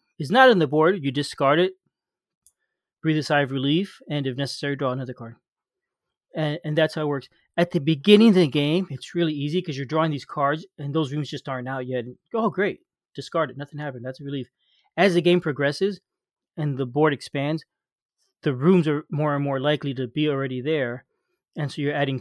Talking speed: 215 wpm